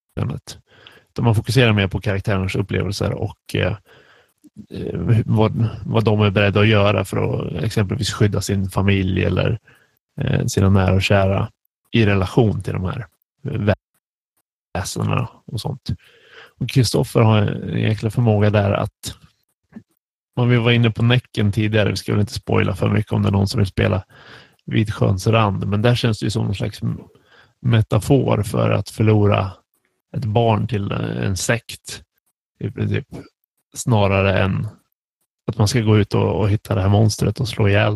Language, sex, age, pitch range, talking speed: Swedish, male, 30-49, 100-120 Hz, 160 wpm